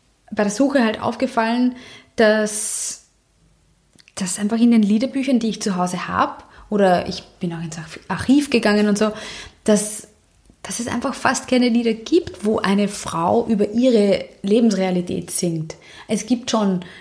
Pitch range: 190-225 Hz